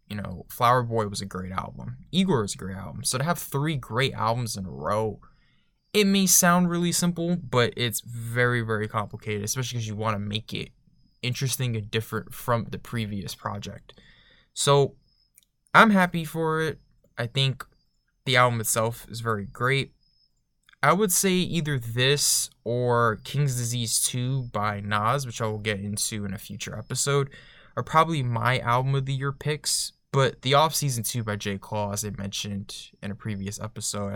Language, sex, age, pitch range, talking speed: English, male, 20-39, 105-140 Hz, 180 wpm